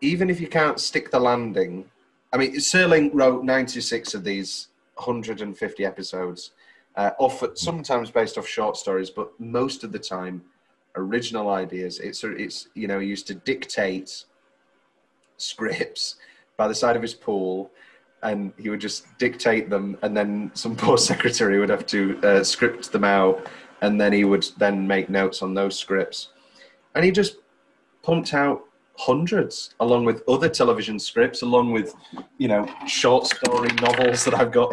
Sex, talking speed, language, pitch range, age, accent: male, 160 wpm, English, 100-130 Hz, 30-49, British